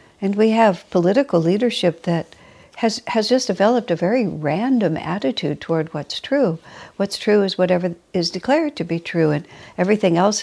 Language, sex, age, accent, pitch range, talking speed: English, female, 60-79, American, 165-210 Hz, 165 wpm